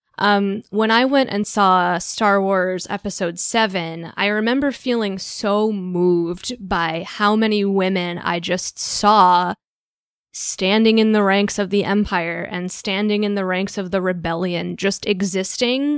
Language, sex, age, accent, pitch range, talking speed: English, female, 10-29, American, 185-220 Hz, 145 wpm